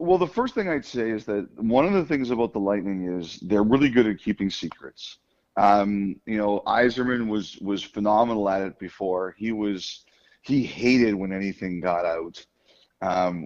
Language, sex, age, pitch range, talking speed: English, male, 40-59, 100-115 Hz, 185 wpm